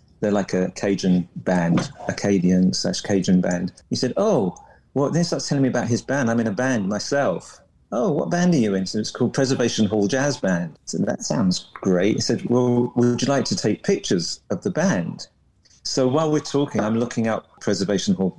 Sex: male